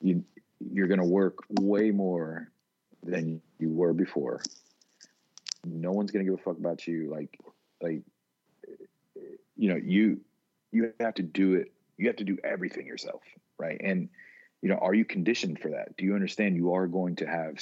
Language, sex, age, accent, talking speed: English, male, 40-59, American, 180 wpm